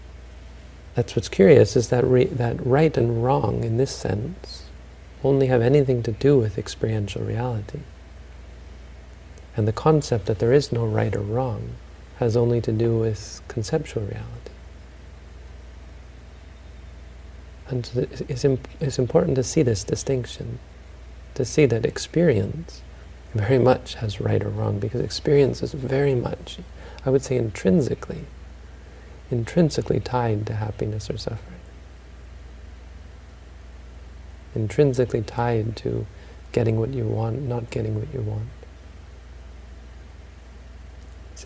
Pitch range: 75-120 Hz